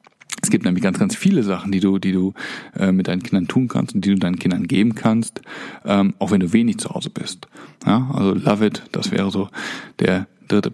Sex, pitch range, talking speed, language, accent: male, 95-125 Hz, 230 wpm, German, German